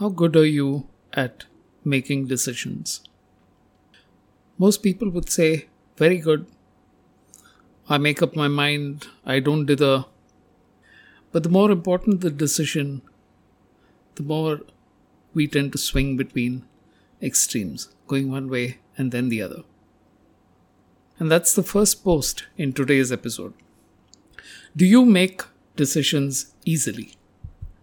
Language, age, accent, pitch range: English, 50-69, Indian, 125-180 Hz